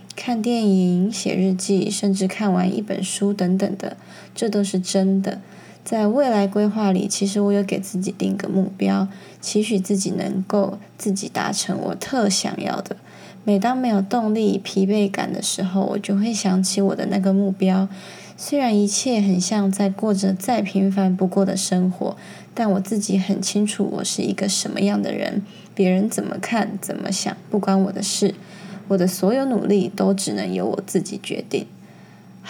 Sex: female